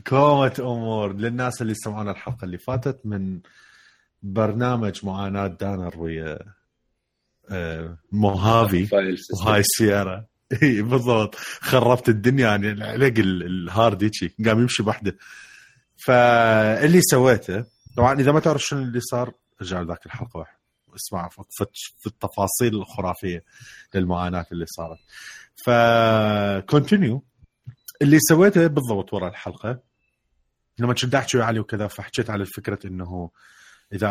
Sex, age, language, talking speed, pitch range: male, 30-49, Arabic, 110 wpm, 95-125 Hz